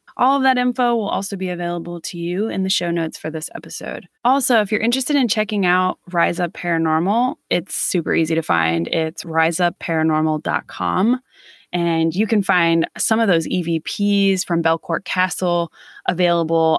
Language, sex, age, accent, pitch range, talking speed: English, female, 20-39, American, 155-190 Hz, 165 wpm